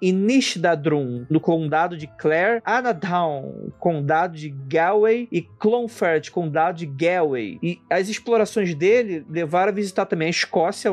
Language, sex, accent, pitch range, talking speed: Portuguese, male, Brazilian, 165-215 Hz, 130 wpm